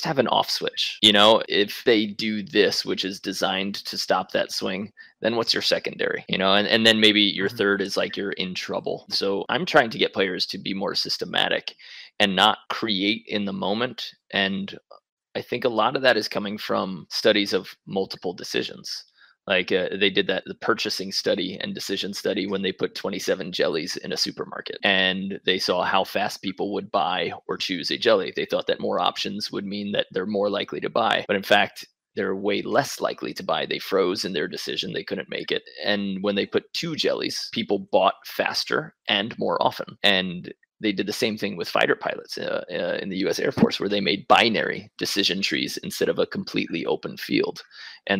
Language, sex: English, male